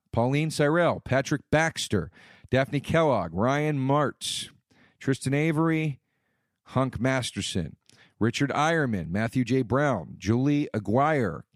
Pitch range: 105-140 Hz